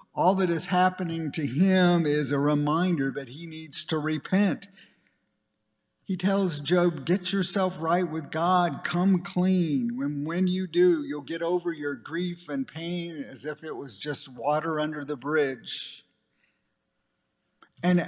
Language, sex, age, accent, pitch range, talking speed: English, male, 50-69, American, 145-180 Hz, 150 wpm